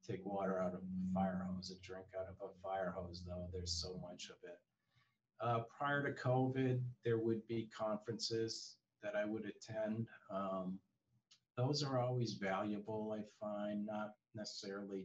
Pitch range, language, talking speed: 95-115 Hz, English, 165 wpm